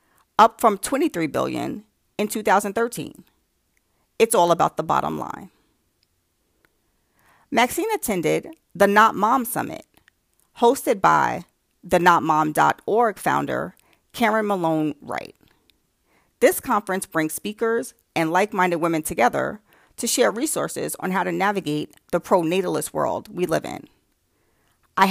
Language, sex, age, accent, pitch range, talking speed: English, female, 40-59, American, 165-230 Hz, 115 wpm